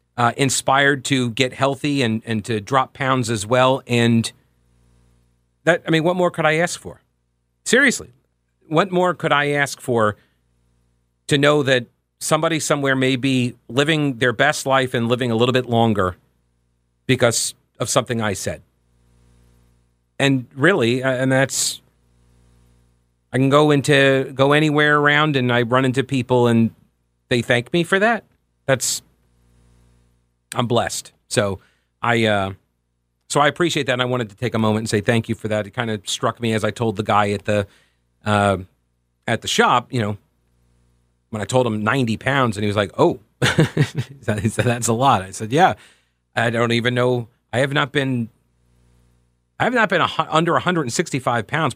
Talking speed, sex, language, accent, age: 175 wpm, male, English, American, 40-59